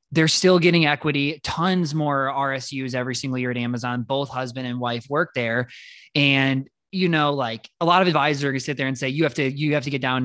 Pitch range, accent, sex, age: 125-150 Hz, American, male, 20-39